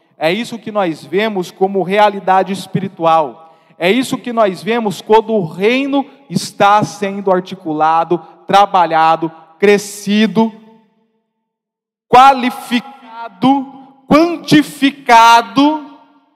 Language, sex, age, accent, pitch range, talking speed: Portuguese, male, 40-59, Brazilian, 180-230 Hz, 85 wpm